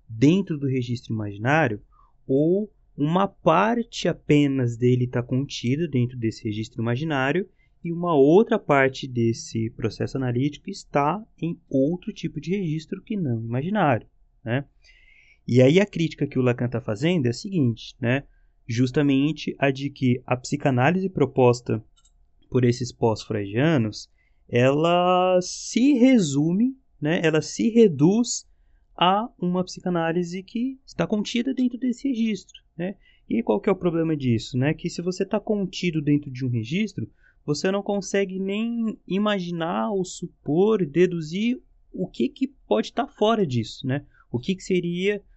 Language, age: Portuguese, 20-39